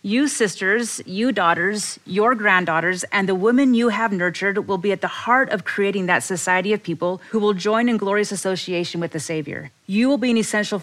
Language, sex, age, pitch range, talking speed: English, female, 30-49, 170-215 Hz, 205 wpm